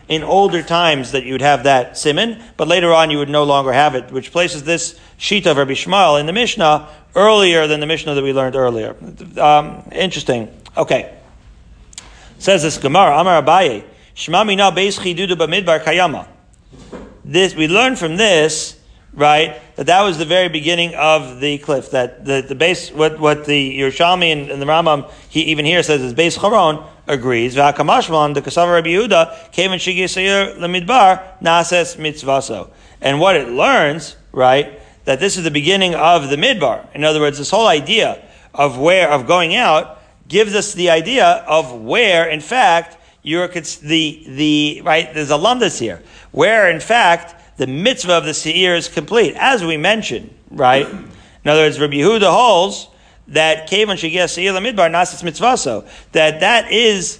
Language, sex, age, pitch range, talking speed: English, male, 40-59, 150-180 Hz, 160 wpm